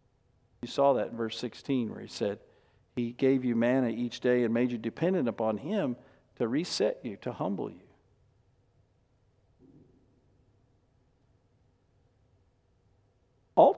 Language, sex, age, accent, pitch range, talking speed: English, male, 50-69, American, 115-165 Hz, 120 wpm